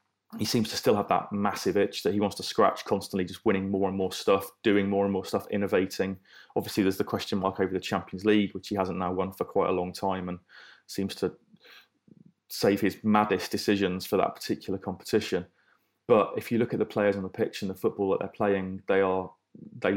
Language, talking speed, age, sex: English, 225 wpm, 30-49, male